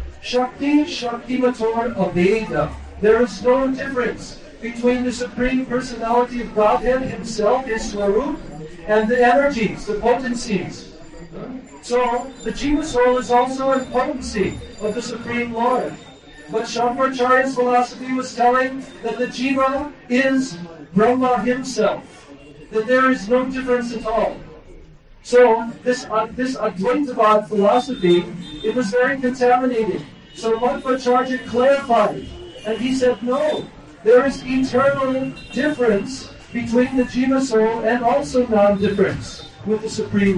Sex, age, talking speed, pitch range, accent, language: male, 50-69, 130 wpm, 220-255 Hz, American, Hindi